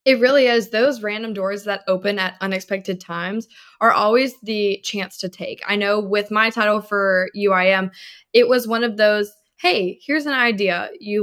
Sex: female